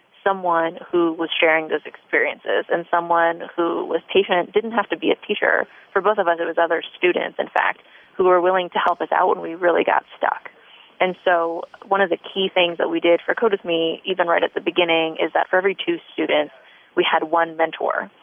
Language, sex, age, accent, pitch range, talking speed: English, female, 30-49, American, 170-205 Hz, 225 wpm